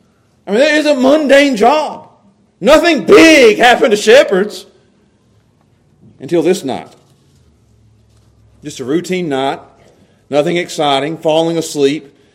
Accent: American